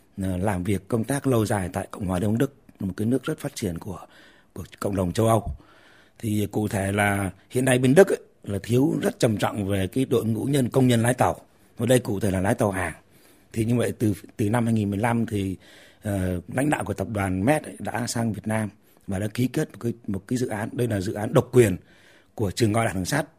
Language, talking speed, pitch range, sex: Vietnamese, 245 wpm, 100-125 Hz, male